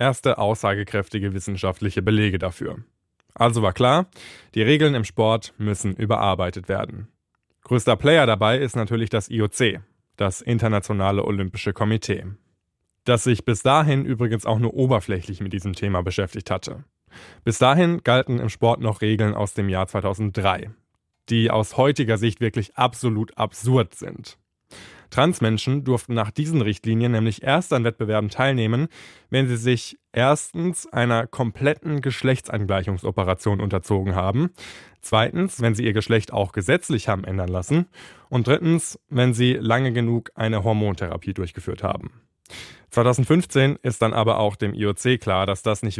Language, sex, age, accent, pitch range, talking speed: German, male, 20-39, German, 100-125 Hz, 140 wpm